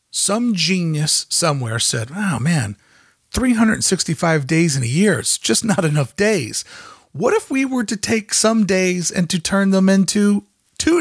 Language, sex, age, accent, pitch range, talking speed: English, male, 40-59, American, 150-205 Hz, 170 wpm